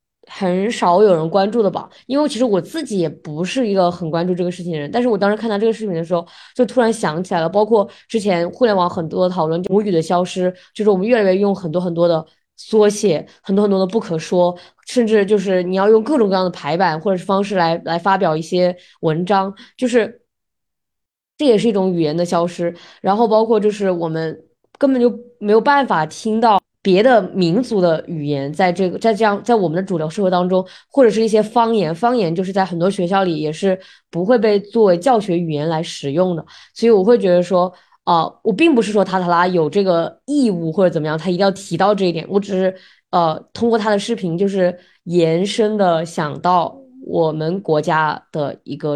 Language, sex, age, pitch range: Chinese, female, 20-39, 170-215 Hz